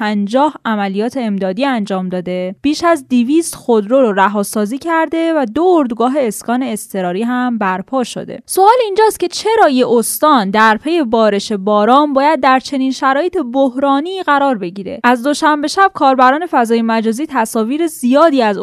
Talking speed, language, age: 140 wpm, Persian, 10-29